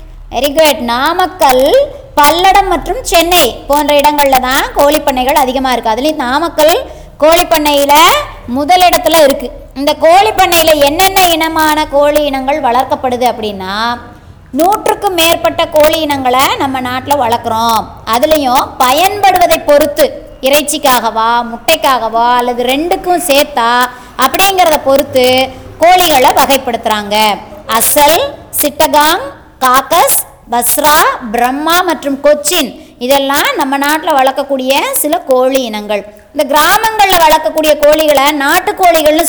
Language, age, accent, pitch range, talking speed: Tamil, 20-39, native, 255-315 Hz, 95 wpm